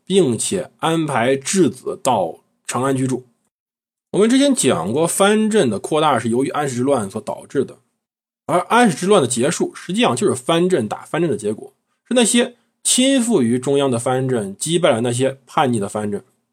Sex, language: male, Chinese